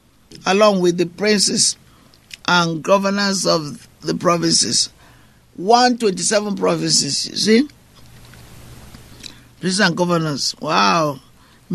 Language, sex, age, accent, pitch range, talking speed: English, male, 60-79, Nigerian, 160-200 Hz, 90 wpm